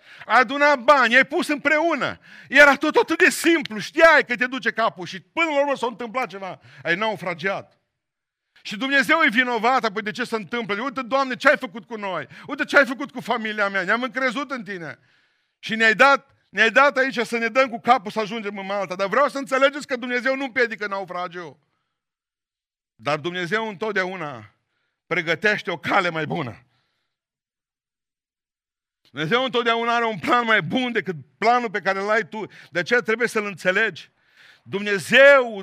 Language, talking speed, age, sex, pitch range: Romanian, 175 wpm, 50-69, male, 200-280 Hz